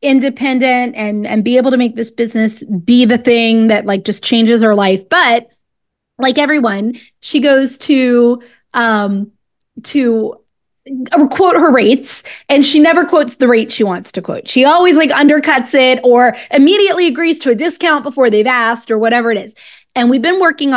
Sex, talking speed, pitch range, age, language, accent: female, 175 wpm, 235-305 Hz, 20-39, English, American